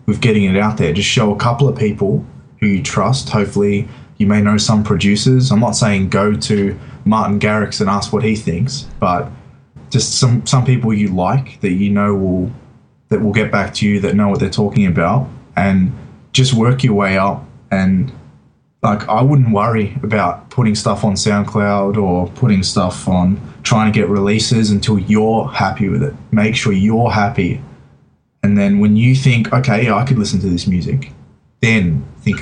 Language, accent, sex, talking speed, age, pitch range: English, Australian, male, 190 wpm, 20-39, 100-120 Hz